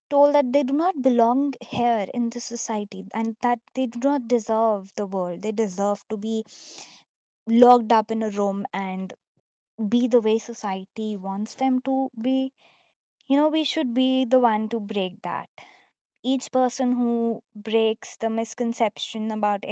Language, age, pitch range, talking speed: English, 20-39, 210-250 Hz, 160 wpm